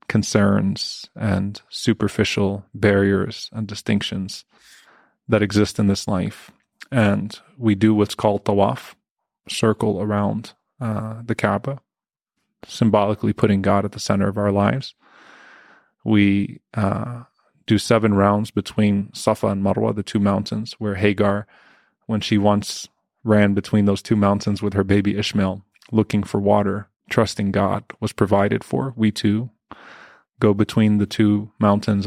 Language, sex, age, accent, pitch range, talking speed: English, male, 20-39, American, 100-110 Hz, 135 wpm